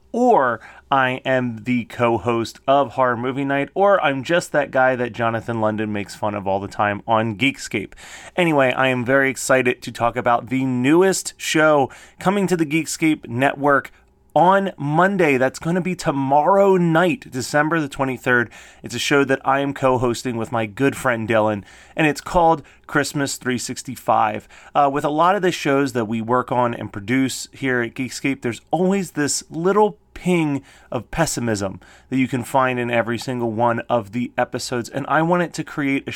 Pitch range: 120-150 Hz